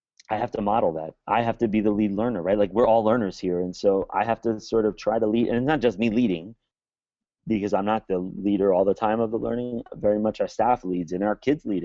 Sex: male